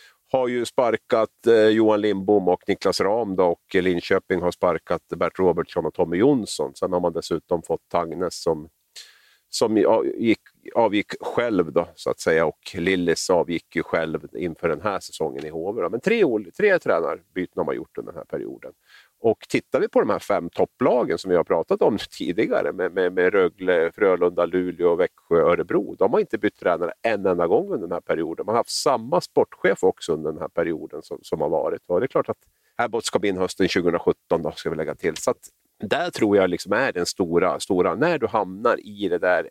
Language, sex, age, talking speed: Swedish, male, 50-69, 205 wpm